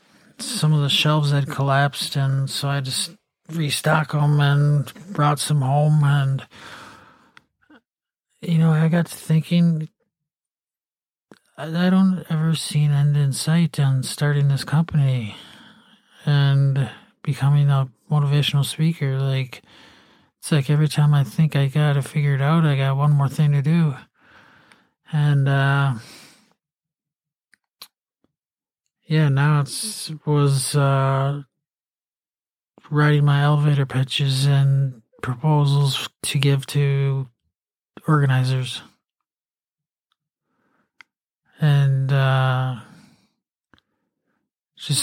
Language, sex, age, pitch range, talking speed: English, male, 50-69, 135-155 Hz, 105 wpm